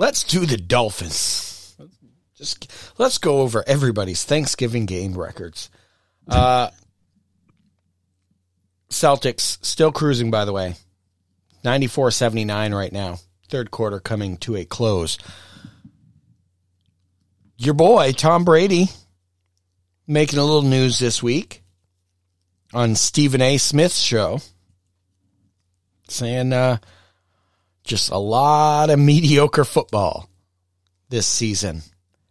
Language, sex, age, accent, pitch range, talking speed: English, male, 30-49, American, 90-130 Hz, 100 wpm